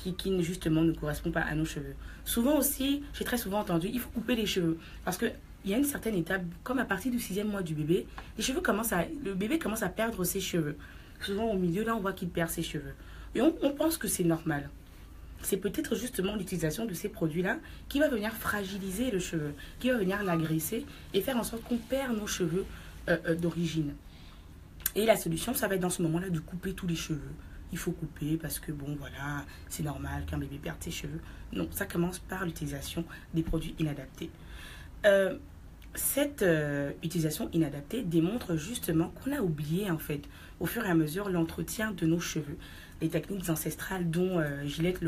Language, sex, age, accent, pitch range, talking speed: French, female, 30-49, French, 160-210 Hz, 205 wpm